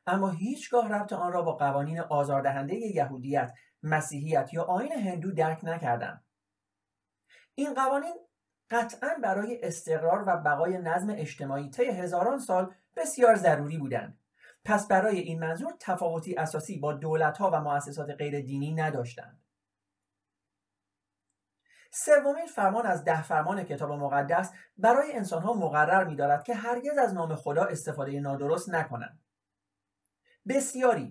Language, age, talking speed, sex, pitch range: Persian, 30-49, 125 wpm, male, 140-210 Hz